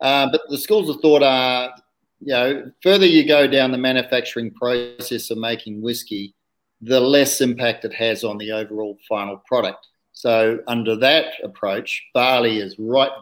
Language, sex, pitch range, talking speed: English, male, 110-130 Hz, 165 wpm